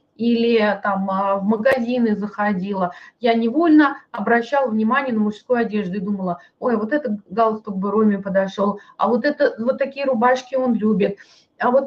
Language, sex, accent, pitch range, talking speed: Russian, female, native, 210-265 Hz, 155 wpm